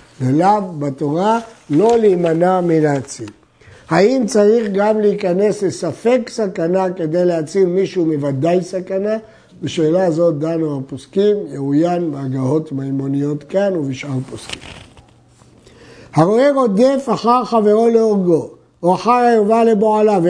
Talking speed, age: 105 wpm, 50-69